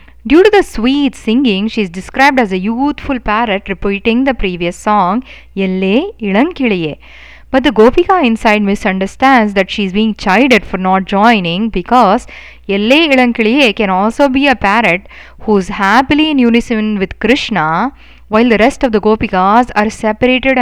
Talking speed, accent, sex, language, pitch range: 155 wpm, Indian, female, English, 200-265 Hz